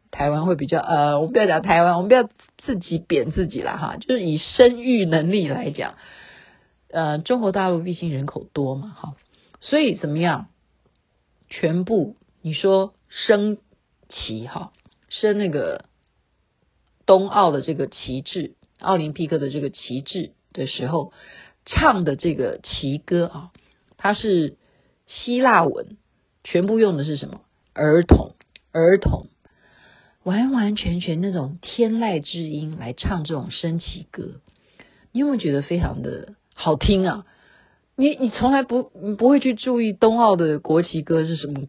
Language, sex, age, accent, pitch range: Chinese, female, 50-69, native, 155-235 Hz